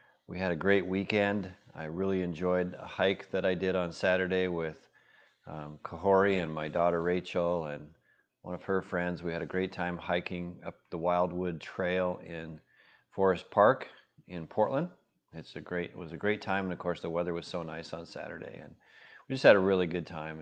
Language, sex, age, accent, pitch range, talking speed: English, male, 40-59, American, 85-100 Hz, 200 wpm